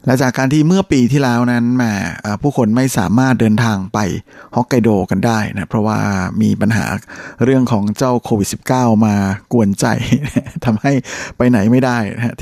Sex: male